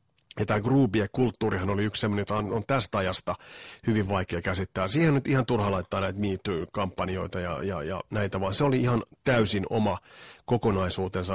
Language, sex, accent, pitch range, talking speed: Finnish, male, native, 100-130 Hz, 160 wpm